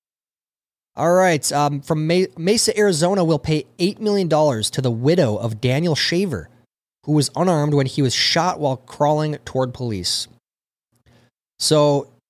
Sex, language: male, English